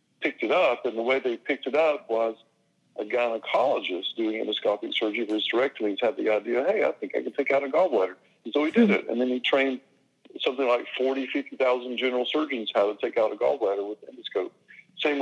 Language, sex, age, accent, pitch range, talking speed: English, male, 50-69, American, 105-135 Hz, 215 wpm